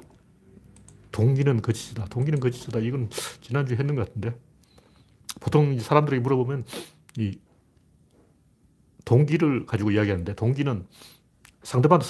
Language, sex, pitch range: Korean, male, 110-150 Hz